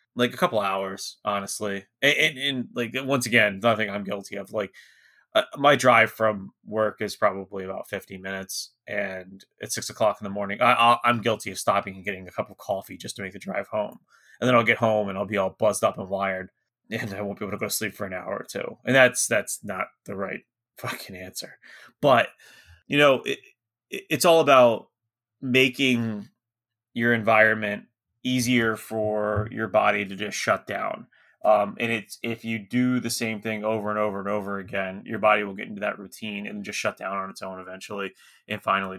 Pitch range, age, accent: 100-115 Hz, 20-39, American